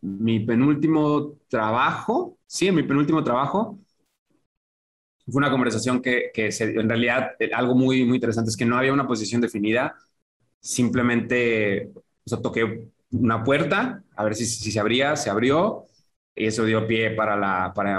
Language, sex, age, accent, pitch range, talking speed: Spanish, male, 20-39, Mexican, 105-125 Hz, 155 wpm